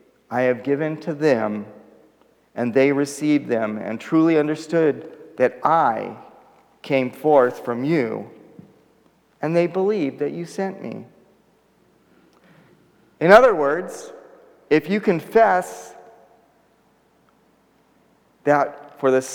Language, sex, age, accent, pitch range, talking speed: English, male, 40-59, American, 140-190 Hz, 105 wpm